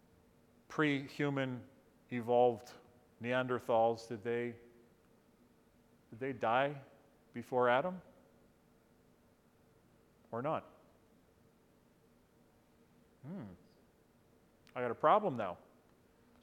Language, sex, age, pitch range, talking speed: English, male, 40-59, 120-155 Hz, 70 wpm